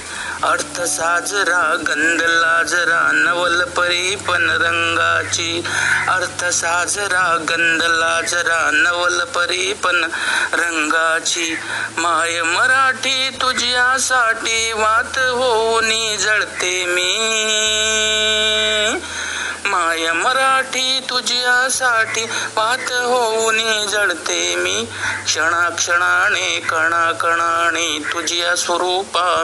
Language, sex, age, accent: Marathi, male, 50-69, native